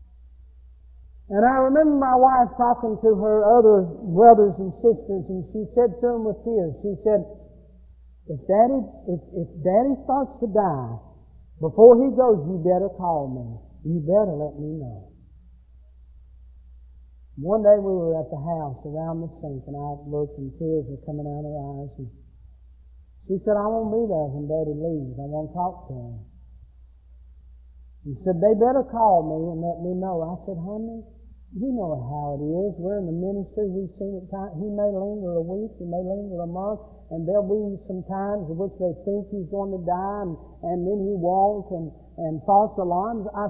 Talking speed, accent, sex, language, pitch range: 190 wpm, American, male, English, 130-205 Hz